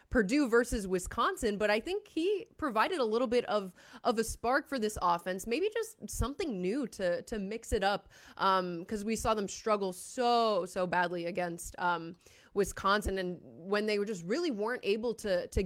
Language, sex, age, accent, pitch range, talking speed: English, female, 20-39, American, 185-240 Hz, 190 wpm